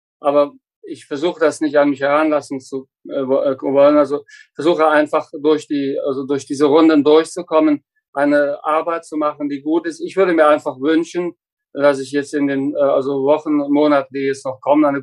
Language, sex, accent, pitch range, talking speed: German, male, German, 135-155 Hz, 185 wpm